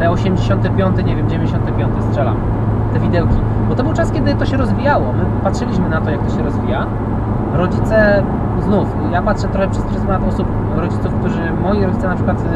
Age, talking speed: 20-39, 180 wpm